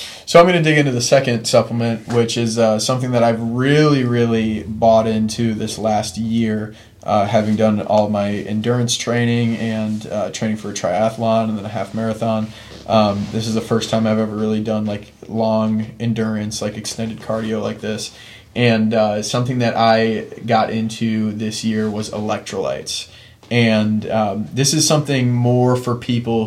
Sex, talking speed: male, 175 wpm